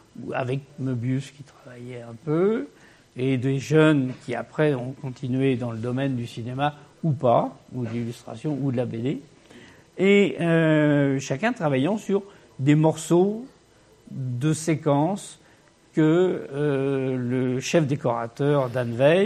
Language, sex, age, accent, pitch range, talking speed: French, male, 60-79, French, 125-155 Hz, 130 wpm